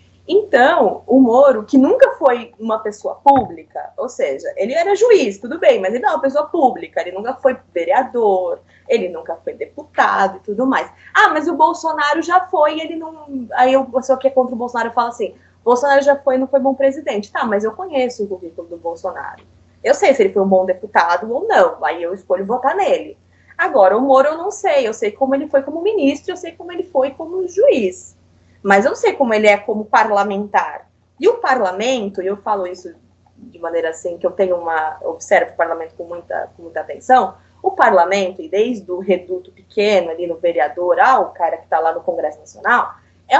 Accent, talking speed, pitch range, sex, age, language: Brazilian, 210 wpm, 195-300 Hz, female, 20-39, Portuguese